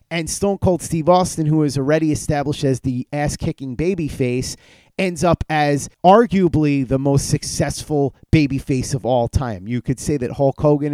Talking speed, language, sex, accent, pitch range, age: 165 wpm, English, male, American, 130-165 Hz, 30-49